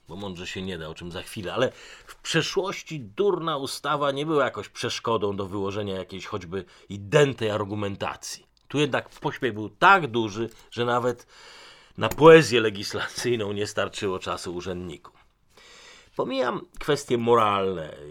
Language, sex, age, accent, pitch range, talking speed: Polish, male, 40-59, native, 95-135 Hz, 140 wpm